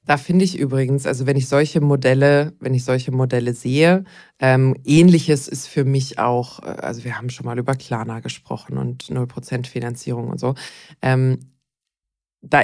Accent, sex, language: German, female, German